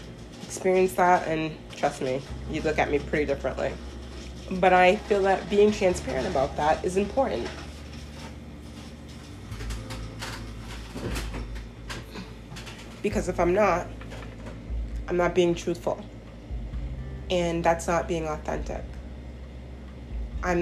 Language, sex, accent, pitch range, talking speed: English, female, American, 105-180 Hz, 100 wpm